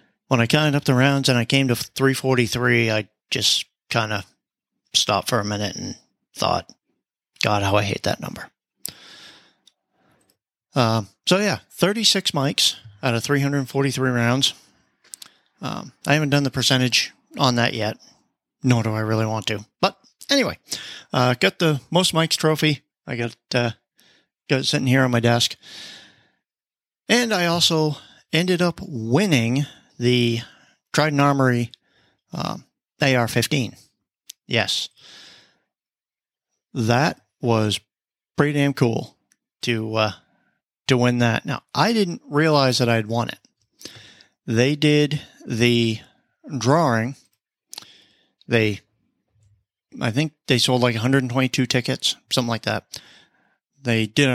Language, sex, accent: English, male, American